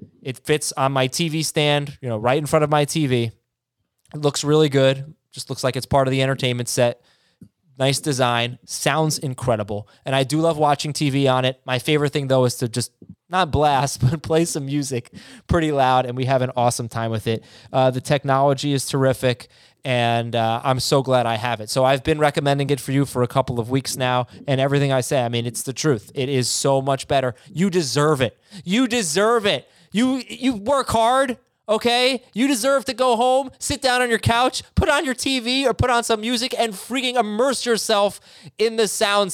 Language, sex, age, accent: English, male, 20-39, American